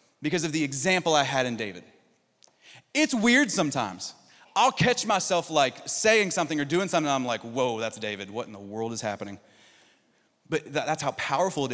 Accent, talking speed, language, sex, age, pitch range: American, 195 wpm, English, male, 30-49, 115-145 Hz